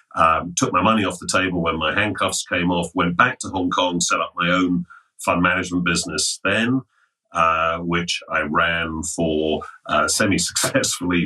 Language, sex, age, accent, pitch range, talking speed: English, male, 40-59, British, 80-95 Hz, 170 wpm